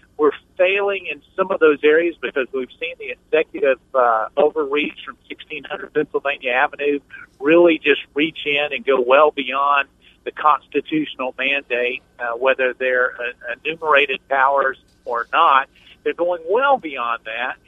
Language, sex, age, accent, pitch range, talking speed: English, male, 50-69, American, 130-185 Hz, 145 wpm